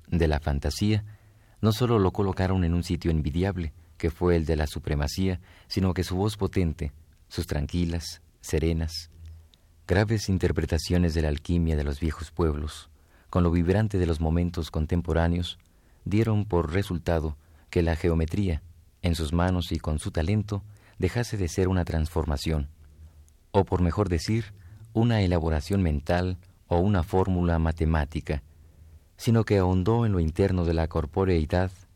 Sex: male